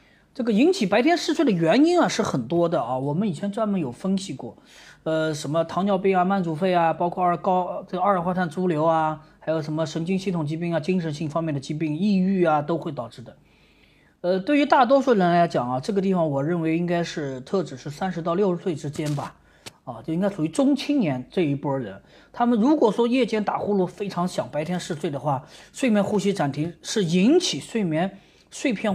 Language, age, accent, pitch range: Chinese, 30-49, native, 155-205 Hz